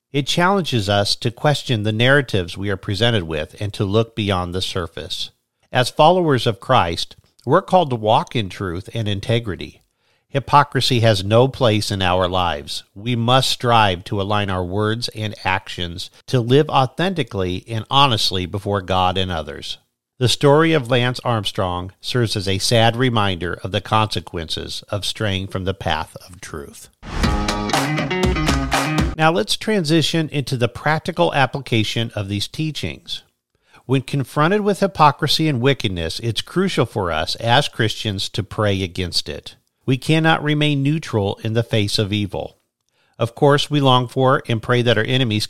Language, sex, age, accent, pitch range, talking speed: English, male, 50-69, American, 100-135 Hz, 155 wpm